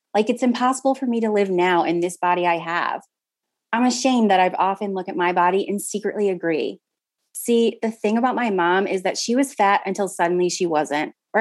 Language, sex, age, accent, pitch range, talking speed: English, female, 30-49, American, 175-215 Hz, 215 wpm